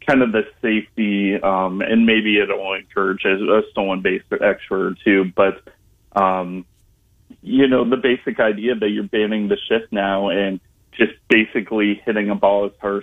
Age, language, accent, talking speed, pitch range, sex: 30-49, English, American, 170 wpm, 95-110 Hz, male